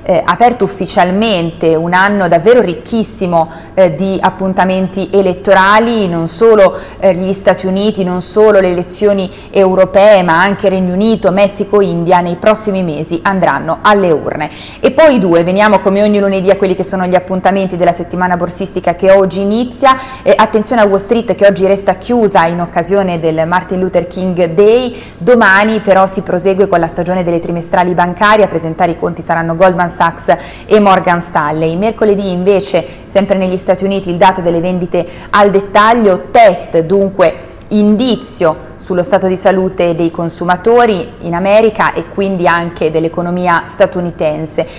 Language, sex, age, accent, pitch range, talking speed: Italian, female, 20-39, native, 175-200 Hz, 160 wpm